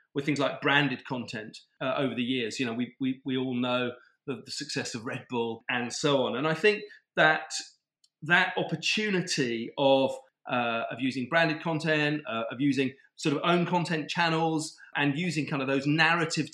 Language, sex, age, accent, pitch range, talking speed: English, male, 40-59, British, 125-155 Hz, 185 wpm